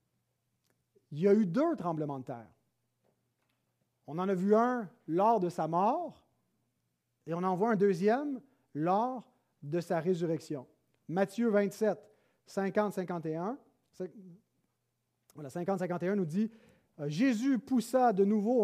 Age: 40-59